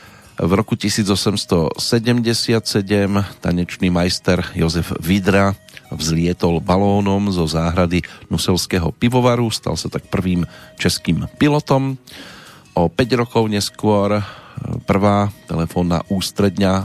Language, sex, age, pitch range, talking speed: Slovak, male, 40-59, 85-110 Hz, 95 wpm